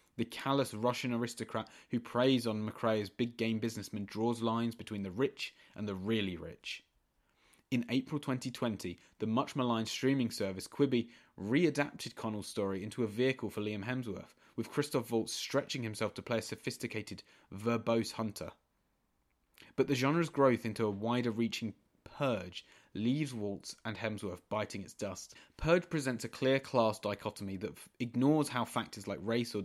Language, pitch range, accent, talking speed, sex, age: English, 105-125 Hz, British, 155 wpm, male, 20-39